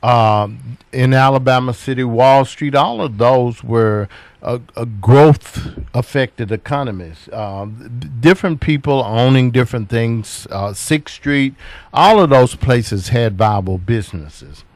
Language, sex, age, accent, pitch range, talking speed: English, male, 50-69, American, 110-135 Hz, 130 wpm